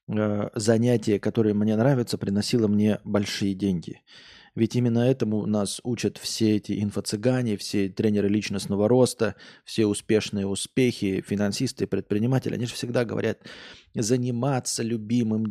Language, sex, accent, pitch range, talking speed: Russian, male, native, 105-125 Hz, 120 wpm